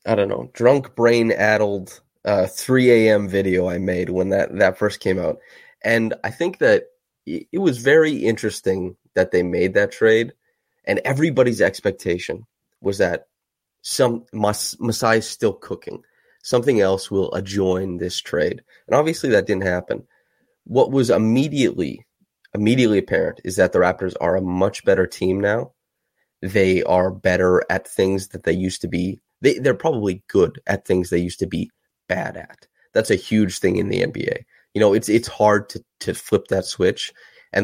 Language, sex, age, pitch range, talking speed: English, male, 20-39, 90-115 Hz, 170 wpm